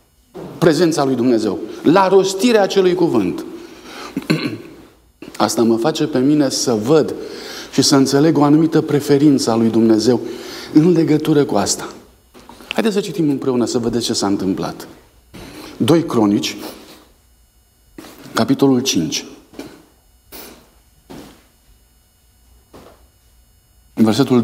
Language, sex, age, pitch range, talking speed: Romanian, male, 50-69, 120-165 Hz, 100 wpm